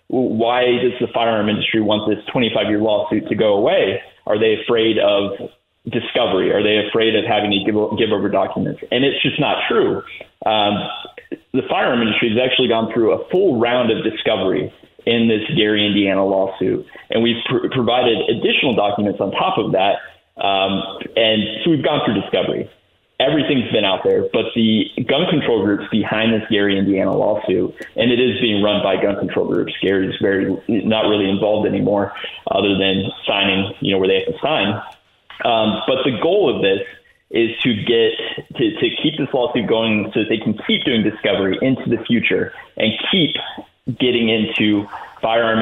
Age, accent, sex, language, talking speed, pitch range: 20-39, American, male, English, 180 wpm, 100-115 Hz